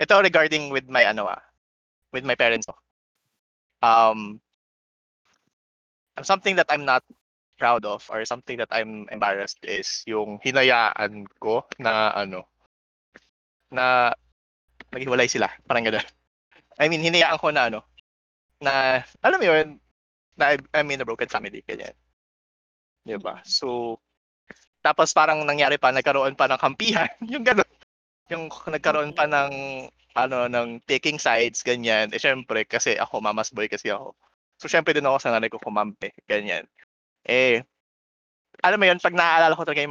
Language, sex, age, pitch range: English, male, 20-39, 110-150 Hz